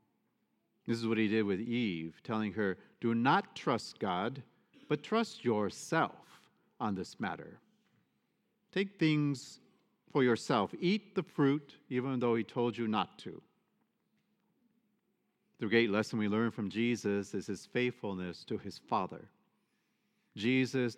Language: English